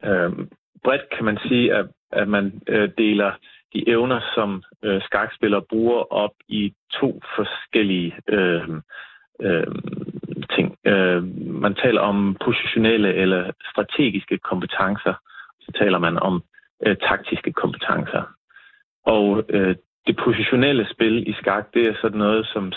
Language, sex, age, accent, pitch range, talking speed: Danish, male, 30-49, native, 95-115 Hz, 135 wpm